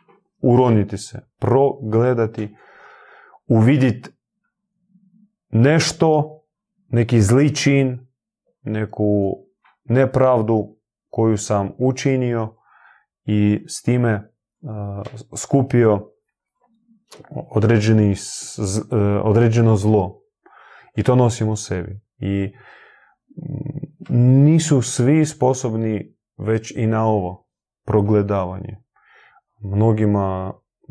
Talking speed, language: 65 wpm, Croatian